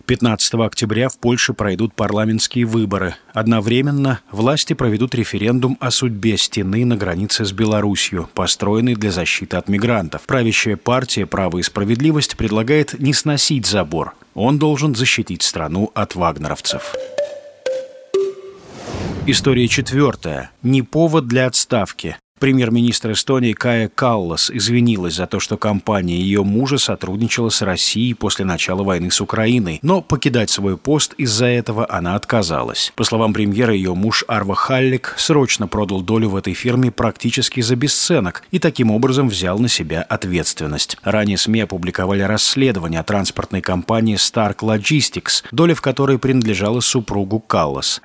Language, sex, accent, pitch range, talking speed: Russian, male, native, 100-130 Hz, 135 wpm